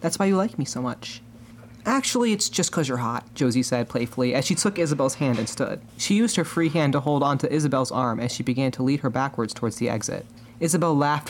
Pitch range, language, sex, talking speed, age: 120-155 Hz, English, male, 240 wpm, 30-49